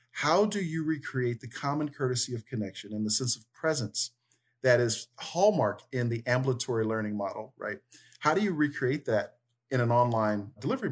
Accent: American